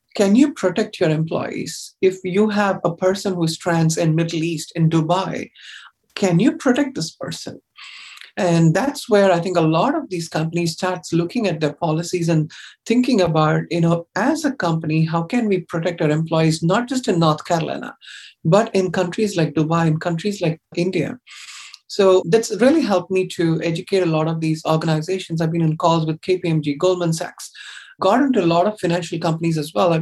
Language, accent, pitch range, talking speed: English, Indian, 160-185 Hz, 190 wpm